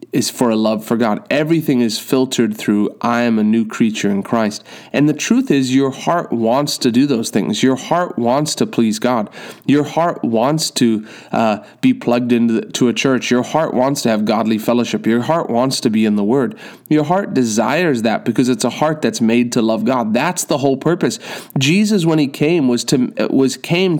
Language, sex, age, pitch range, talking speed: English, male, 30-49, 115-150 Hz, 215 wpm